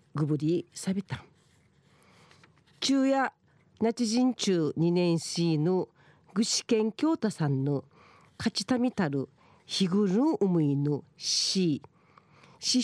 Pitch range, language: 160-235 Hz, Japanese